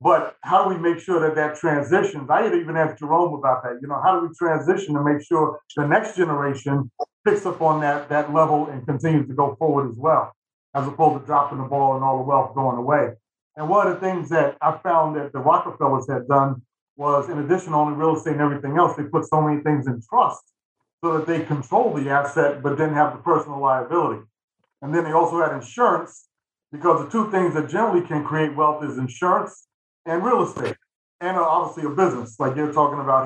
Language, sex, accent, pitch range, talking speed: English, male, American, 140-160 Hz, 220 wpm